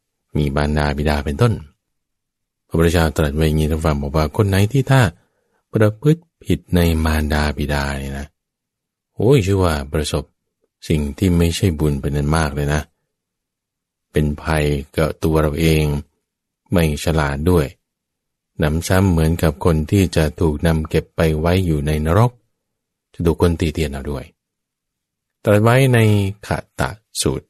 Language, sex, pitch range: English, male, 75-95 Hz